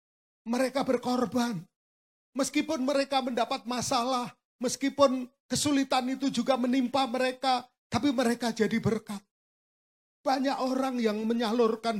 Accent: native